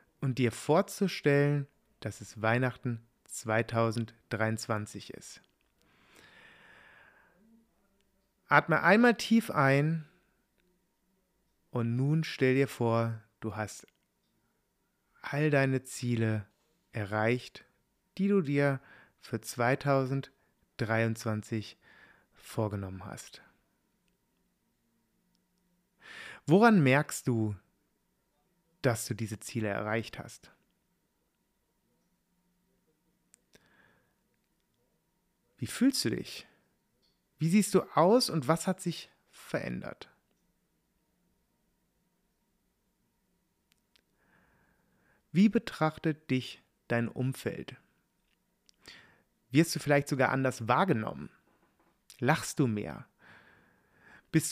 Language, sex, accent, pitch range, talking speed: German, male, German, 115-180 Hz, 75 wpm